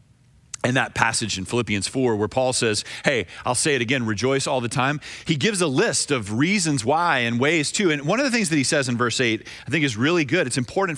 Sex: male